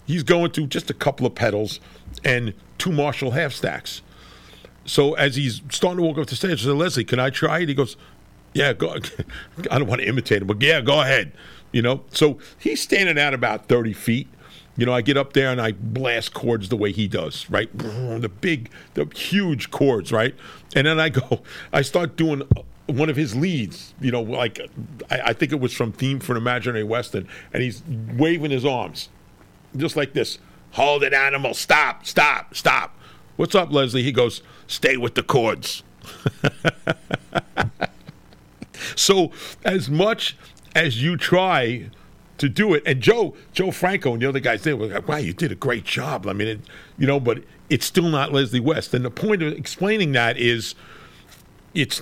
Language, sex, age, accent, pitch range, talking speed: English, male, 50-69, American, 120-160 Hz, 190 wpm